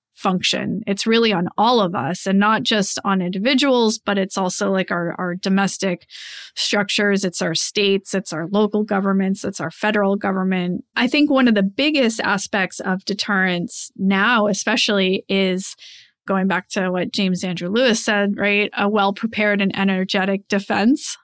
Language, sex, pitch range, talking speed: English, female, 195-230 Hz, 160 wpm